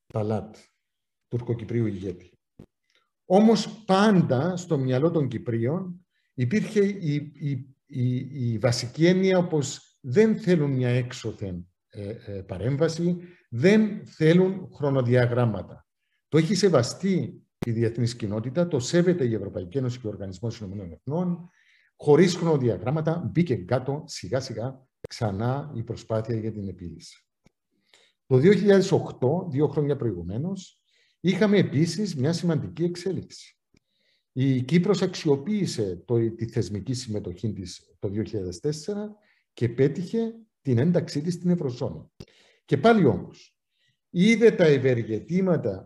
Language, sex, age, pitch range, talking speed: Greek, male, 50-69, 115-175 Hz, 110 wpm